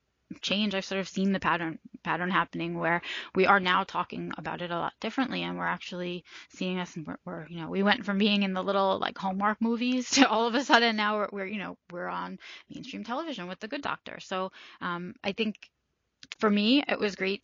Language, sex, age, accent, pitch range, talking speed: English, female, 20-39, American, 180-205 Hz, 225 wpm